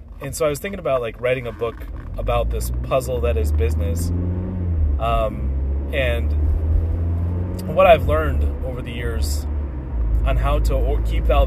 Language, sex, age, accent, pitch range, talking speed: English, male, 30-49, American, 70-85 Hz, 150 wpm